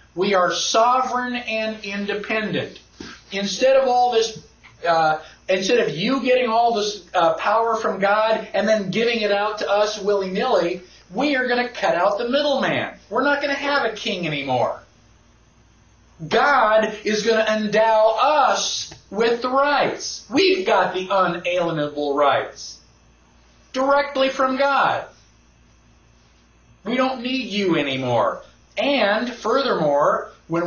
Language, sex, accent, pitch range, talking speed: English, male, American, 165-235 Hz, 135 wpm